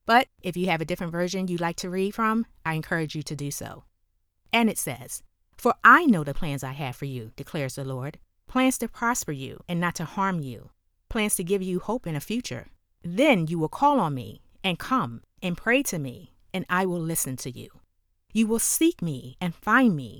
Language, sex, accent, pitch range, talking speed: English, female, American, 140-215 Hz, 225 wpm